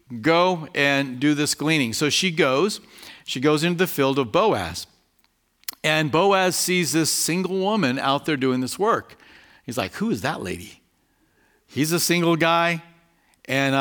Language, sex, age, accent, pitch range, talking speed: English, male, 50-69, American, 135-195 Hz, 160 wpm